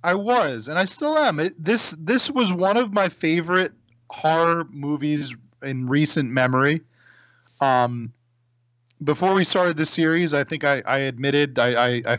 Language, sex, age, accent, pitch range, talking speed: English, male, 30-49, American, 120-160 Hz, 160 wpm